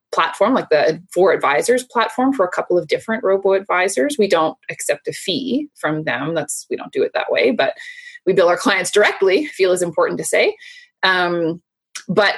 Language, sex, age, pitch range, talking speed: English, female, 20-39, 180-260 Hz, 195 wpm